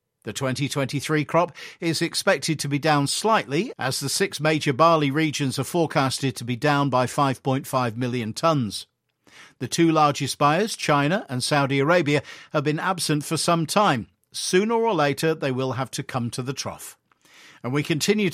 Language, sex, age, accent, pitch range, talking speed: English, male, 50-69, British, 140-170 Hz, 170 wpm